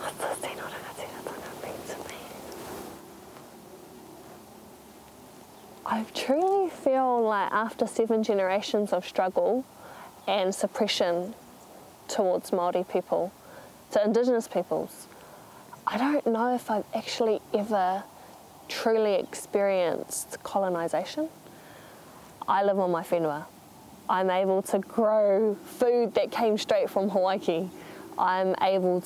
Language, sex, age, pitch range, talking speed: English, female, 10-29, 185-230 Hz, 95 wpm